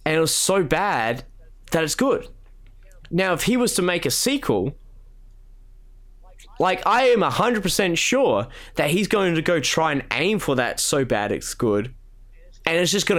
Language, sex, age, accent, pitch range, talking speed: English, male, 20-39, Australian, 120-160 Hz, 185 wpm